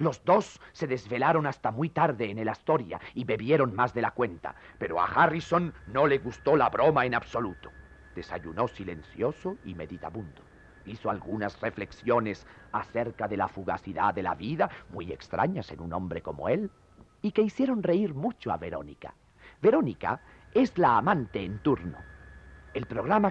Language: Spanish